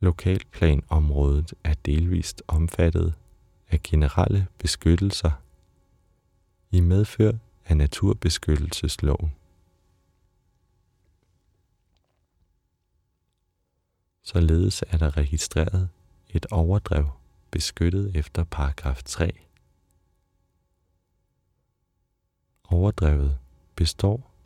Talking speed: 55 wpm